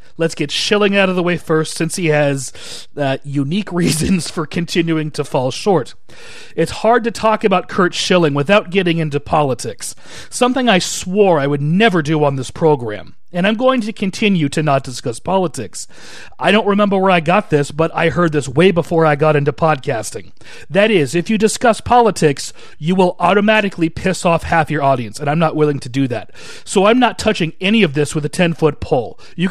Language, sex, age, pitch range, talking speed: English, male, 40-59, 150-200 Hz, 200 wpm